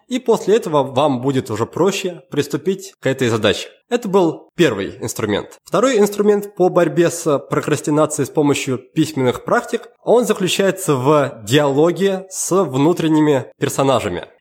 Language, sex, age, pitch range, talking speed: Russian, male, 20-39, 140-200 Hz, 135 wpm